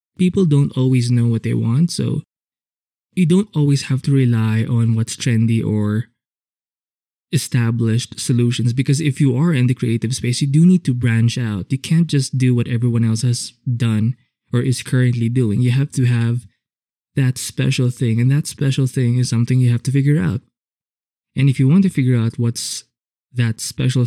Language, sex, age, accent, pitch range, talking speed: English, male, 20-39, Filipino, 120-140 Hz, 185 wpm